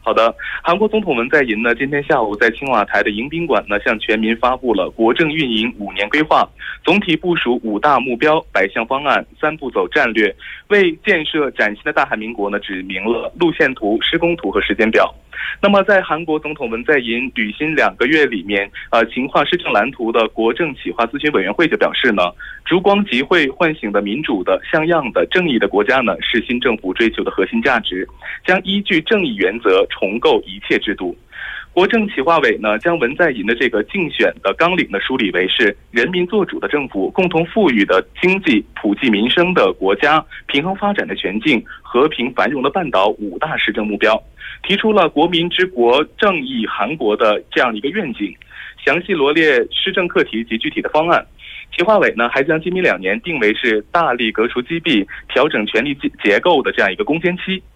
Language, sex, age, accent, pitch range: Korean, male, 20-39, Chinese, 115-185 Hz